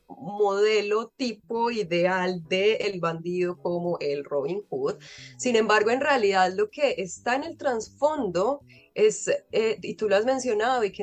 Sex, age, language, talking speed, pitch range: female, 20-39, Spanish, 160 wpm, 185-245 Hz